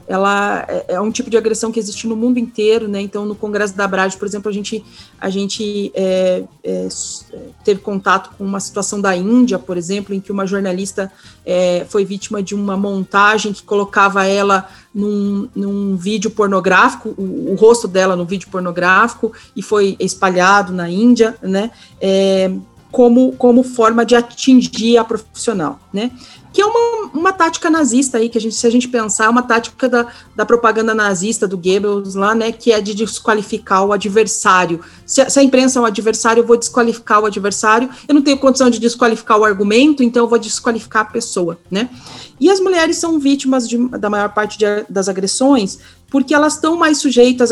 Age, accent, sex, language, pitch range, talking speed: 40-59, Brazilian, female, Portuguese, 200-235 Hz, 180 wpm